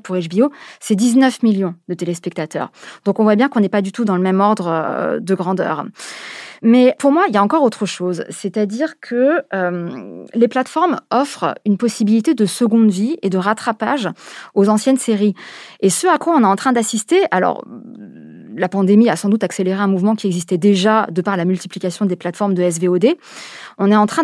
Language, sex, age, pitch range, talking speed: French, female, 20-39, 190-235 Hz, 200 wpm